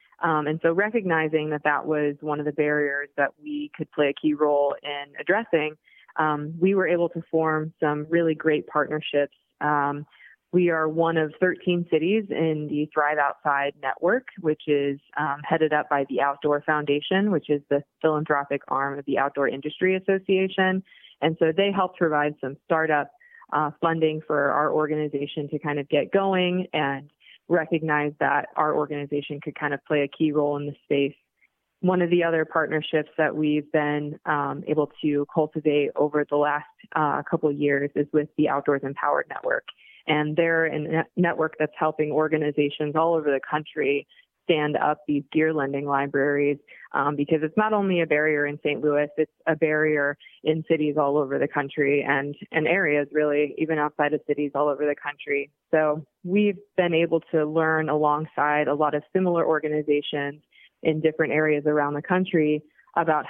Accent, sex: American, female